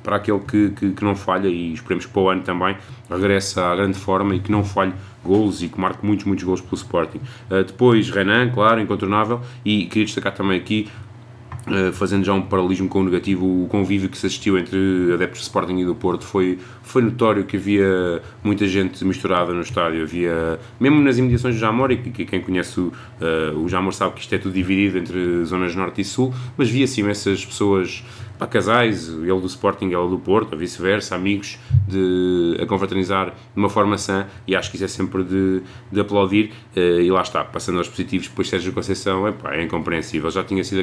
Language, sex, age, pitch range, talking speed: Portuguese, male, 20-39, 95-110 Hz, 210 wpm